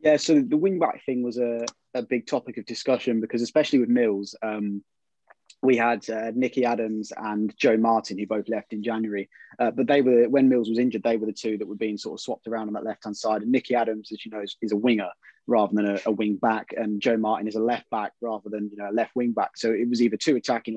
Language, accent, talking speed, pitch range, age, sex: English, British, 250 wpm, 110-125 Hz, 20-39, male